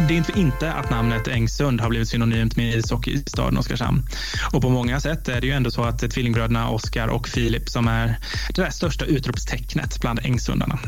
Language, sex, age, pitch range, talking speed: Swedish, male, 20-39, 120-140 Hz, 195 wpm